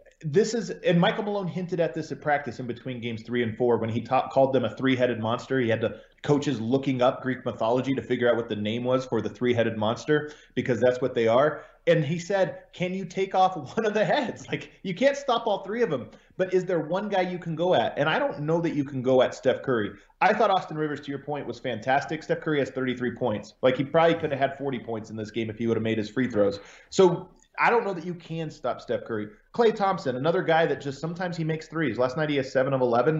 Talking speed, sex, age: 260 wpm, male, 30-49